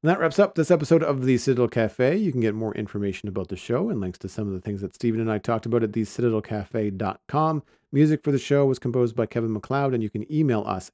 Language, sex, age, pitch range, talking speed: English, male, 40-59, 105-135 Hz, 260 wpm